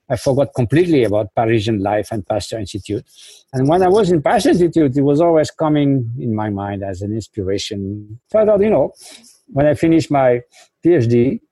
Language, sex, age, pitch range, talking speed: English, male, 50-69, 115-150 Hz, 175 wpm